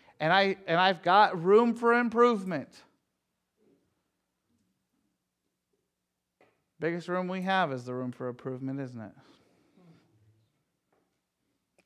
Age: 40-59